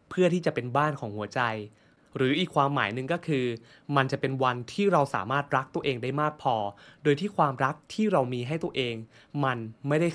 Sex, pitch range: male, 120-155 Hz